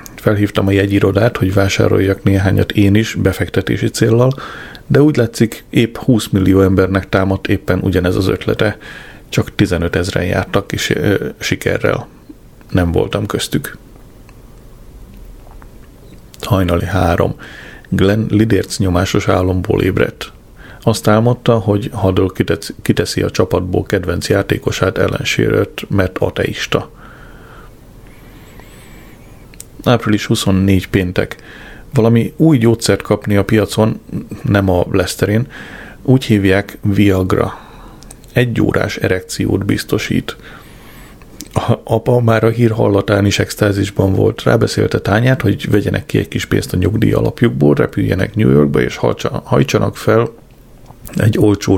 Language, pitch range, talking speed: Hungarian, 95-115 Hz, 110 wpm